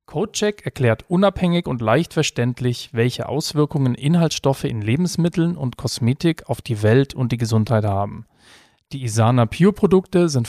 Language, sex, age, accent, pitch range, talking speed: German, male, 40-59, German, 120-150 Hz, 135 wpm